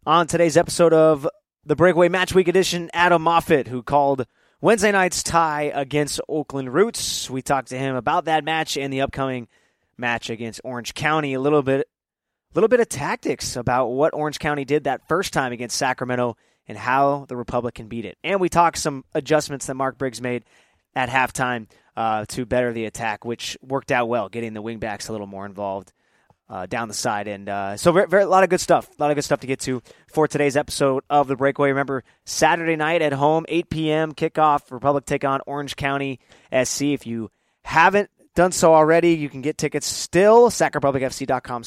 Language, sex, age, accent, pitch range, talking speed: English, male, 20-39, American, 125-160 Hz, 195 wpm